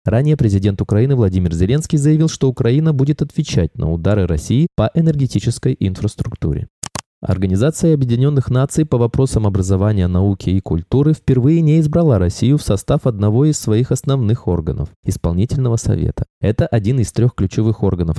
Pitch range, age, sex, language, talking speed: 100-145 Hz, 20-39, male, Russian, 145 wpm